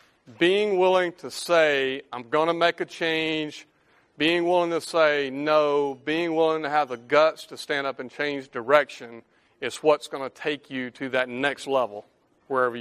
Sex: male